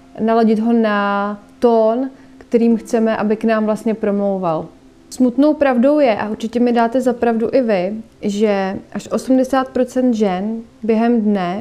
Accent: native